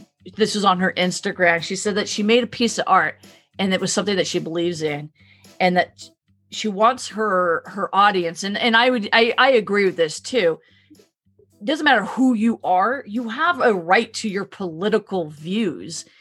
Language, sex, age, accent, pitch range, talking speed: English, female, 40-59, American, 170-220 Hz, 195 wpm